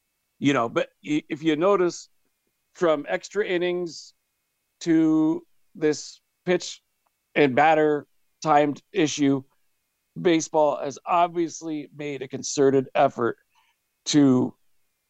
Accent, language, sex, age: American, English, male, 50-69